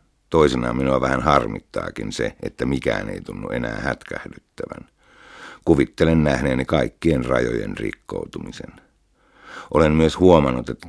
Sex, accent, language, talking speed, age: male, native, Finnish, 110 wpm, 60-79